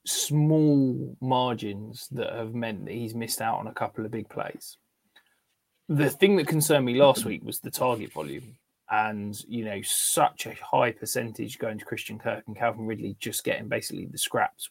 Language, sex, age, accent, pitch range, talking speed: English, male, 20-39, British, 115-145 Hz, 185 wpm